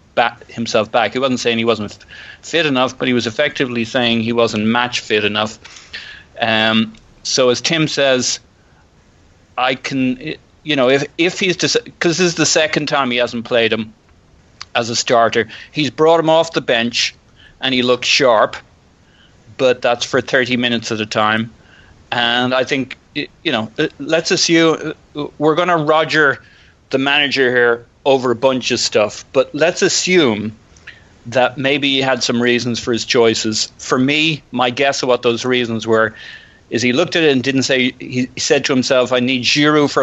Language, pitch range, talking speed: English, 115-135 Hz, 180 wpm